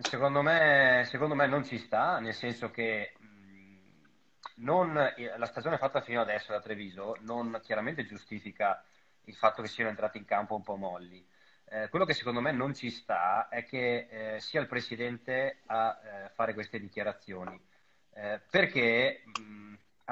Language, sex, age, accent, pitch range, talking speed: Italian, male, 30-49, native, 105-130 Hz, 160 wpm